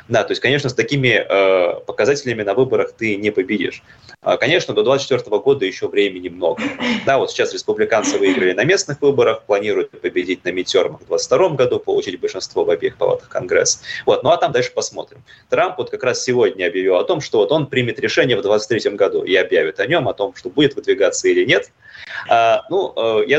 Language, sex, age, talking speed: Russian, male, 20-39, 200 wpm